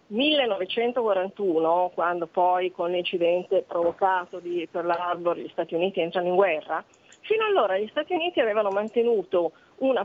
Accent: native